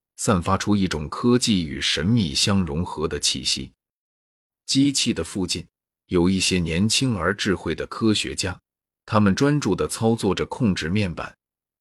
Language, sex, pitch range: Chinese, male, 85-110 Hz